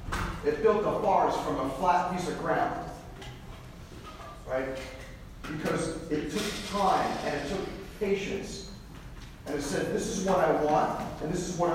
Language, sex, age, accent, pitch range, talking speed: English, male, 40-59, American, 165-225 Hz, 160 wpm